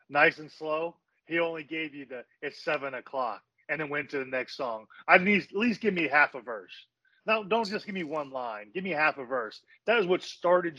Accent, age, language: American, 30-49, English